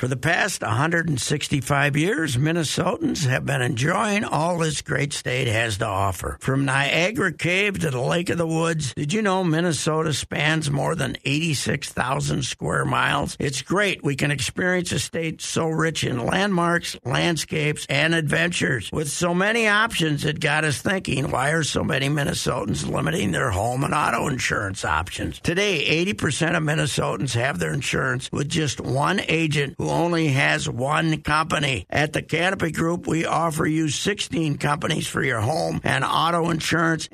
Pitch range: 135-165 Hz